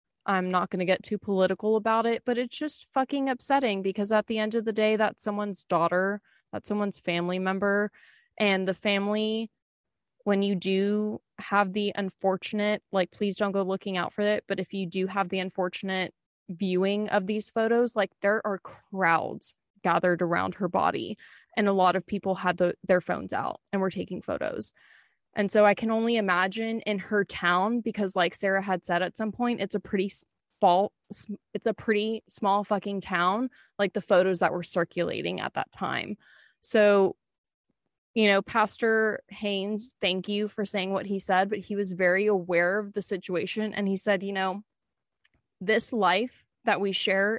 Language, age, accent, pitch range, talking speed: English, 20-39, American, 190-215 Hz, 180 wpm